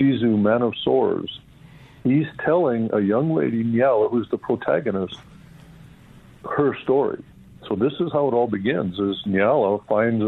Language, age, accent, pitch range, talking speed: English, 60-79, American, 105-135 Hz, 140 wpm